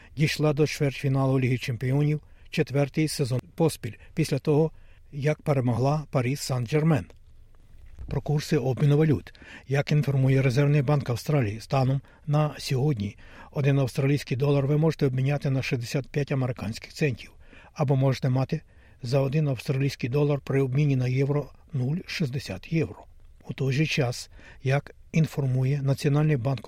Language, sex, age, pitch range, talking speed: Ukrainian, male, 60-79, 120-150 Hz, 130 wpm